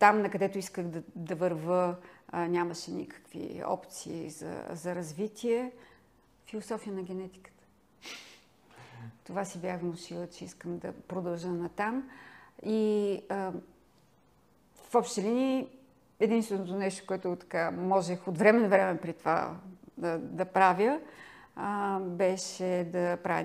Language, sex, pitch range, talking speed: Bulgarian, female, 175-205 Hz, 125 wpm